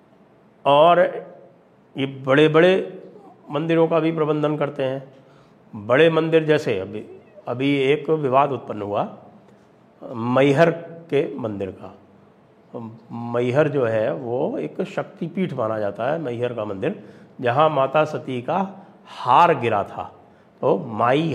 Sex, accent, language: male, Indian, English